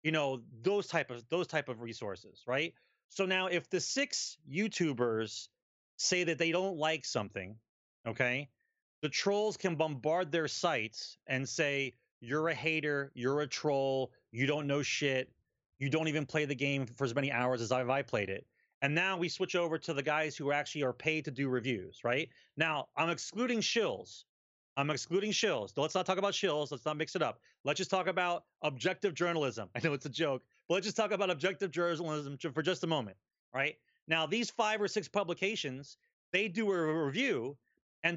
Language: English